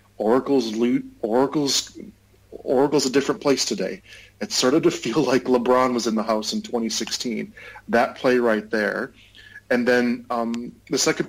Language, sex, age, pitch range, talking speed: English, male, 40-59, 110-130 Hz, 155 wpm